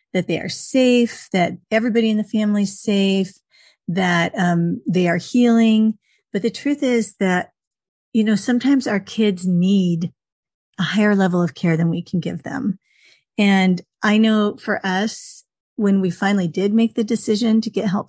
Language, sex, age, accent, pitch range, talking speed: English, female, 40-59, American, 190-220 Hz, 175 wpm